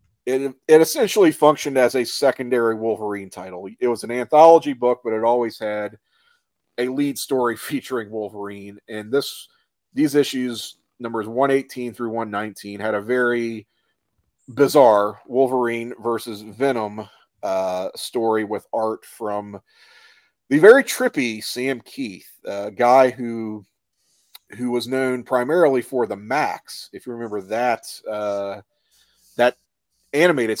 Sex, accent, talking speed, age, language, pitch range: male, American, 125 wpm, 40-59, English, 105-135 Hz